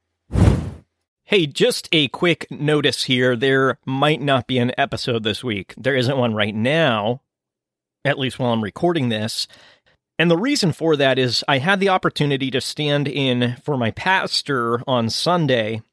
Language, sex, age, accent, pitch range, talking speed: English, male, 30-49, American, 120-150 Hz, 160 wpm